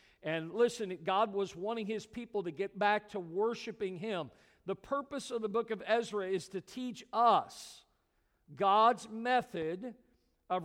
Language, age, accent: English, 50-69, American